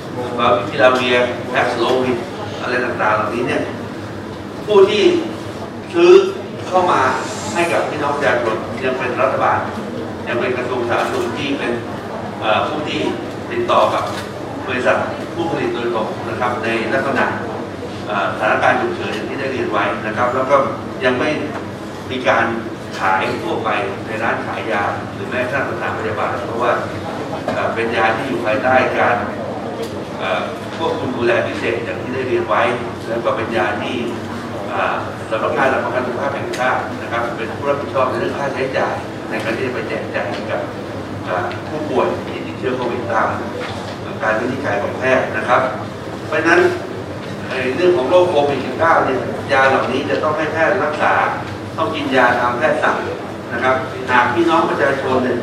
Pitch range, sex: 110-130 Hz, male